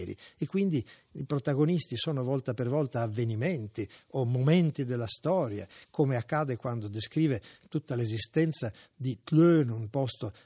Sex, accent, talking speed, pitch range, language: male, native, 130 wpm, 120-155 Hz, Italian